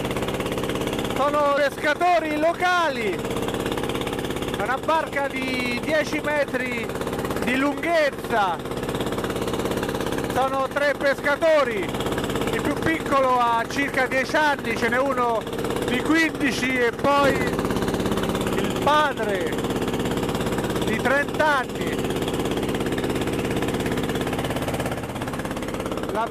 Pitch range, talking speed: 235-285 Hz, 80 wpm